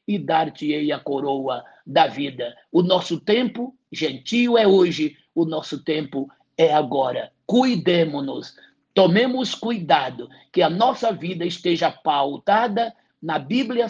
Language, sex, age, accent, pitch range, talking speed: English, male, 60-79, Brazilian, 150-210 Hz, 125 wpm